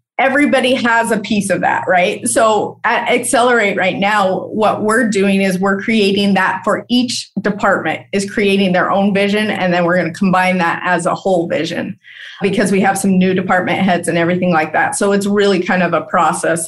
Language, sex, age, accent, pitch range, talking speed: English, female, 30-49, American, 180-225 Hz, 200 wpm